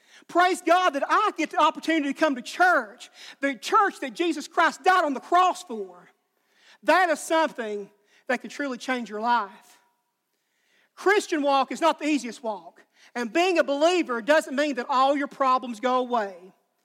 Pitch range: 230-300 Hz